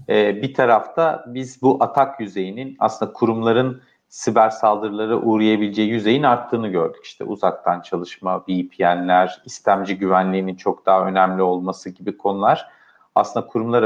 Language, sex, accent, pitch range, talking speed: Turkish, male, native, 100-120 Hz, 125 wpm